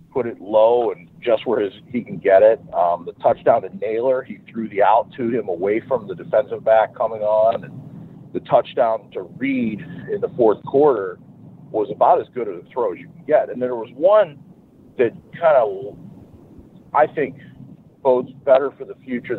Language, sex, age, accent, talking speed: English, male, 50-69, American, 190 wpm